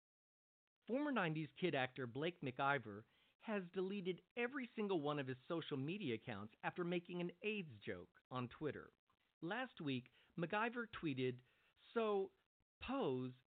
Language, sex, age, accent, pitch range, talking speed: English, male, 50-69, American, 125-185 Hz, 130 wpm